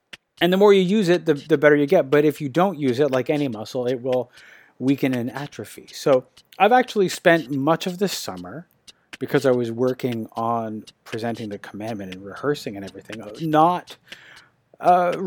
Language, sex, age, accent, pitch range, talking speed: English, male, 30-49, American, 115-150 Hz, 185 wpm